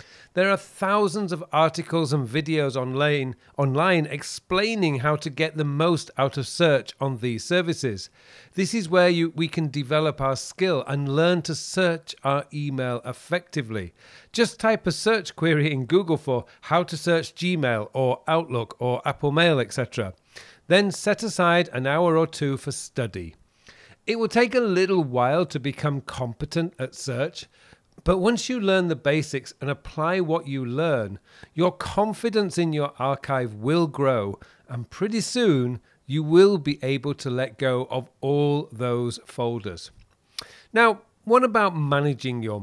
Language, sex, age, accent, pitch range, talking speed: English, male, 40-59, British, 130-175 Hz, 155 wpm